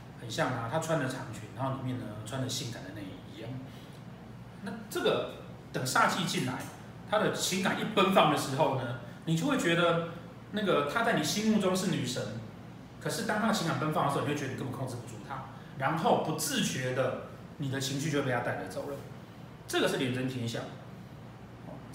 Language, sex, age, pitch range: Chinese, male, 30-49, 130-185 Hz